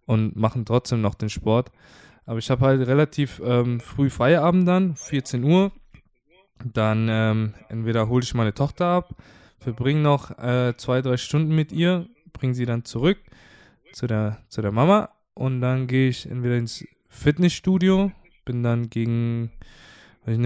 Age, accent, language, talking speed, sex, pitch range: 20-39, German, German, 155 wpm, male, 115-145 Hz